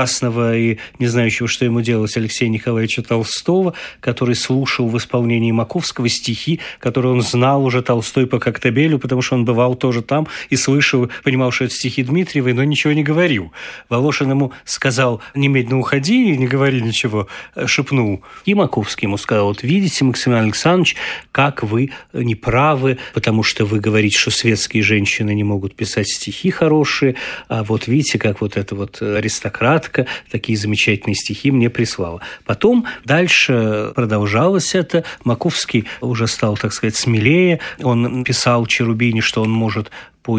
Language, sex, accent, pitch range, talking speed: Russian, male, native, 110-135 Hz, 150 wpm